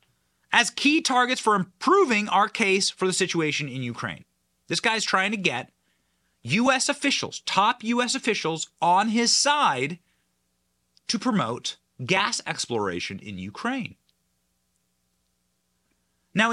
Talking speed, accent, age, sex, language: 115 wpm, American, 30-49, male, English